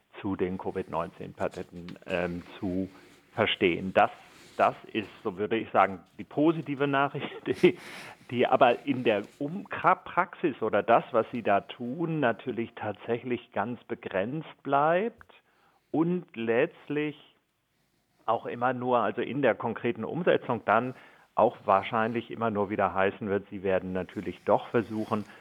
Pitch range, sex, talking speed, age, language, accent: 95-120 Hz, male, 130 wpm, 50-69, German, German